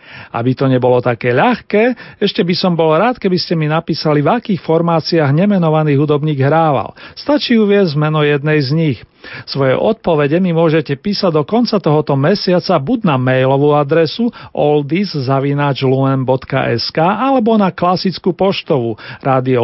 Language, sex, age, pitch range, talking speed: Slovak, male, 40-59, 135-185 Hz, 135 wpm